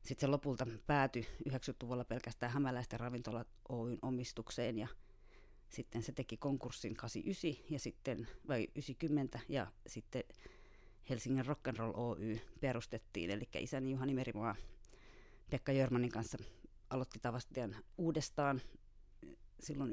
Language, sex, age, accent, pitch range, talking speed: Finnish, female, 30-49, native, 115-135 Hz, 110 wpm